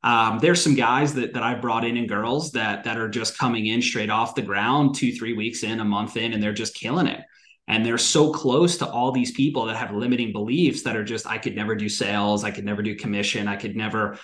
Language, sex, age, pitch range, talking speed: English, male, 30-49, 115-135 Hz, 255 wpm